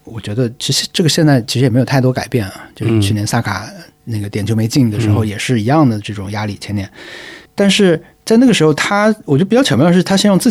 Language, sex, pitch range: Chinese, male, 110-150 Hz